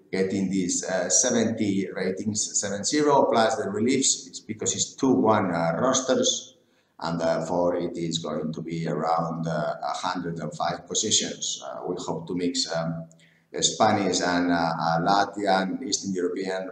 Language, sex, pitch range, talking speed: English, male, 90-110 Hz, 145 wpm